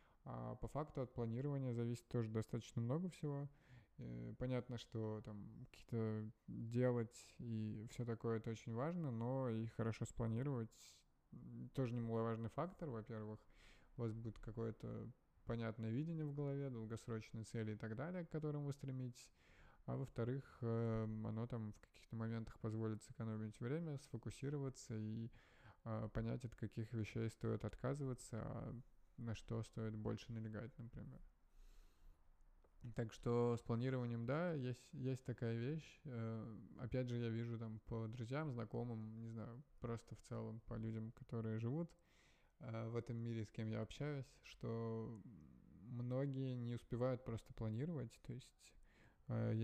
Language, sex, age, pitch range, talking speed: Russian, male, 20-39, 110-125 Hz, 135 wpm